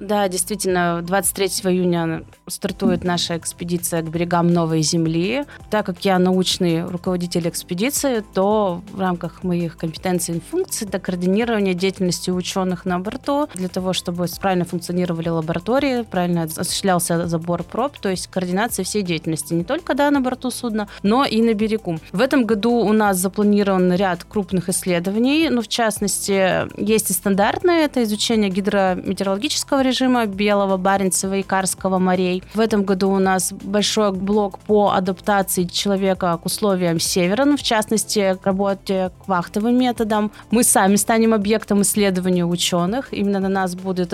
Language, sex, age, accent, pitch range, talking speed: Russian, female, 30-49, native, 185-220 Hz, 150 wpm